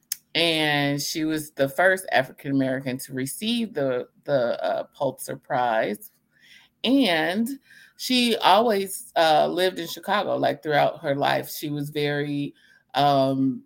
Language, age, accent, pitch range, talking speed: English, 30-49, American, 130-160 Hz, 125 wpm